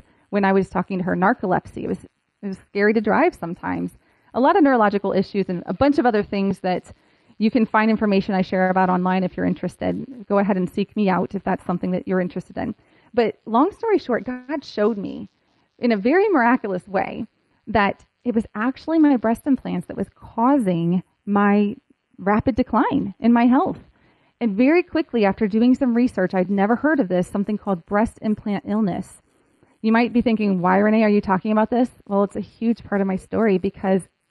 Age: 30-49